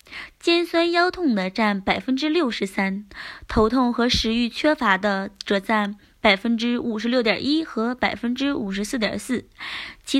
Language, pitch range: Chinese, 215-285 Hz